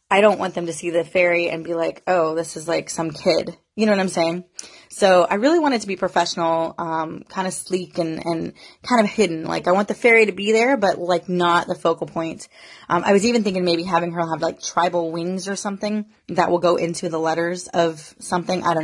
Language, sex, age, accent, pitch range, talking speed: English, female, 20-39, American, 165-190 Hz, 245 wpm